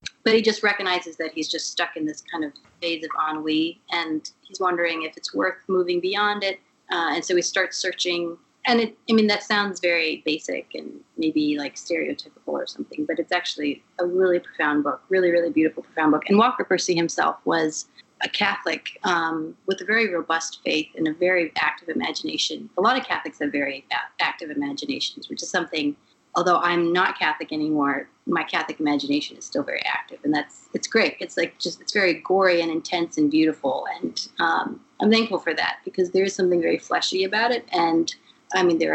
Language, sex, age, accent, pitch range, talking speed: English, female, 30-49, American, 160-195 Hz, 195 wpm